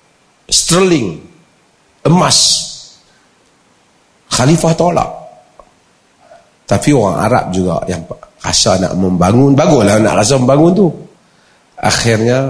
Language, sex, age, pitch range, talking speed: Malay, male, 40-59, 125-170 Hz, 85 wpm